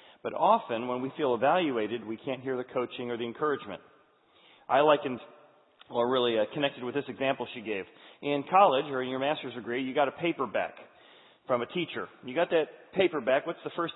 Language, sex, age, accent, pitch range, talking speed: English, male, 40-59, American, 145-225 Hz, 200 wpm